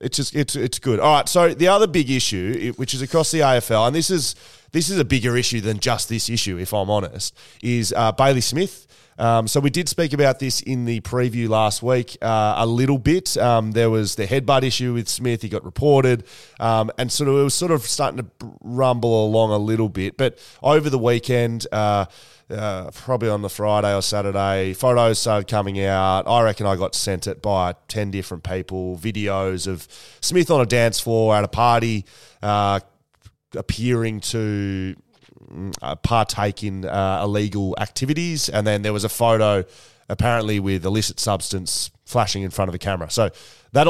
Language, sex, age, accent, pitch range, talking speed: English, male, 20-39, Australian, 100-130 Hz, 195 wpm